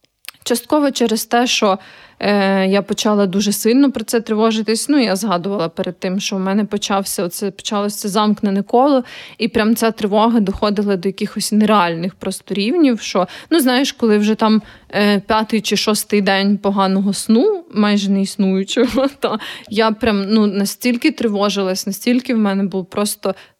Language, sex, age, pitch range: Ukrainian, female, 20-39, 195-225 Hz